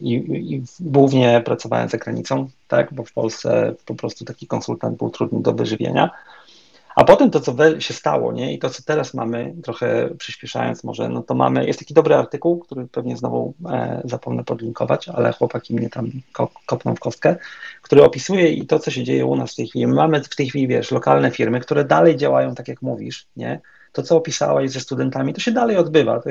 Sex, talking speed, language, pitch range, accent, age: male, 200 wpm, Polish, 115-140 Hz, native, 30-49